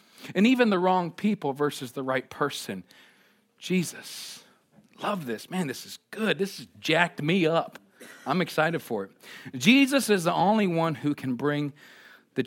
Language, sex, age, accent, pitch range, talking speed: English, male, 40-59, American, 145-215 Hz, 165 wpm